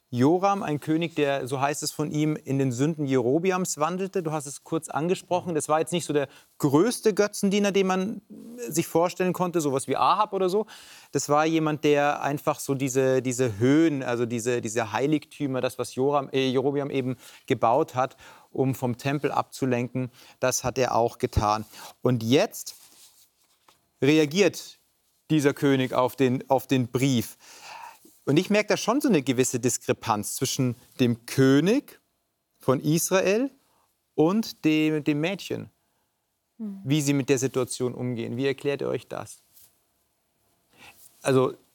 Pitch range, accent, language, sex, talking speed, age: 125-160 Hz, German, German, male, 150 wpm, 40-59